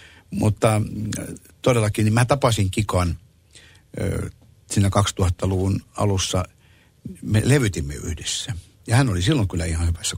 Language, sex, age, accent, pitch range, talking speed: Finnish, male, 60-79, native, 90-105 Hz, 110 wpm